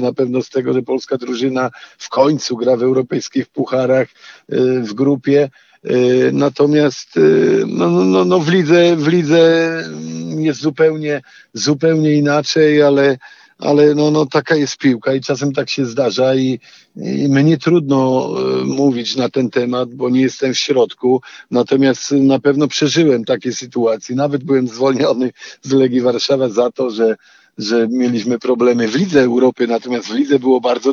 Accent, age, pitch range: native, 50-69, 115-140 Hz